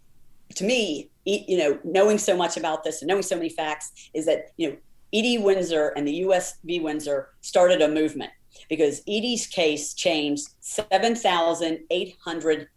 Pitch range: 155-195 Hz